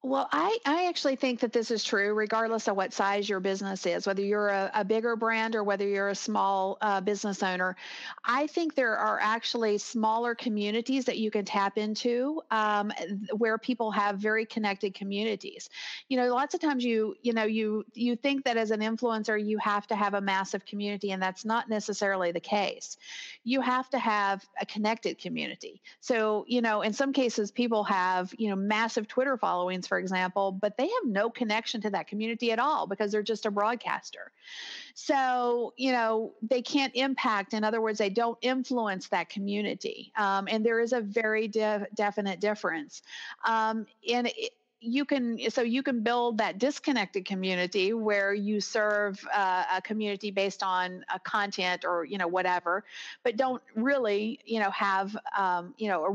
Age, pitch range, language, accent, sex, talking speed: 50-69, 200-240 Hz, English, American, female, 185 wpm